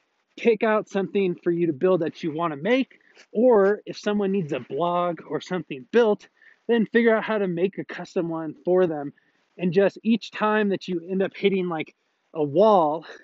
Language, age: English, 20-39